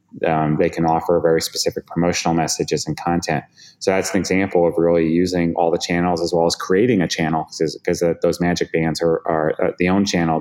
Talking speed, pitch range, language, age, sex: 200 wpm, 80-90 Hz, English, 30-49, male